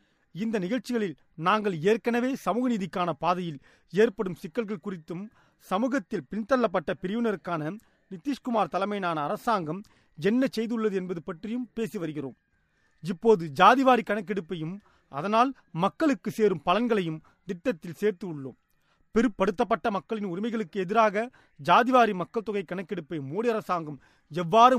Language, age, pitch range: Tamil, 30-49, 180-230 Hz